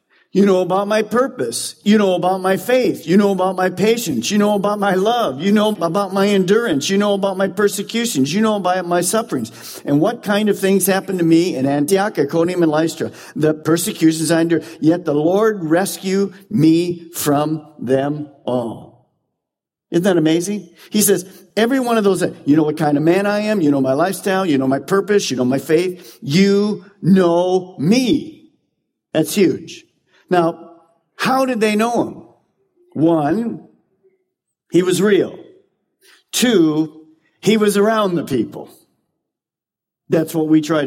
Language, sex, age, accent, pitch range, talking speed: English, male, 50-69, American, 155-200 Hz, 165 wpm